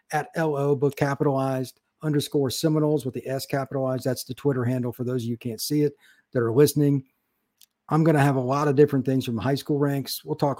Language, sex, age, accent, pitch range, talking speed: English, male, 50-69, American, 125-150 Hz, 225 wpm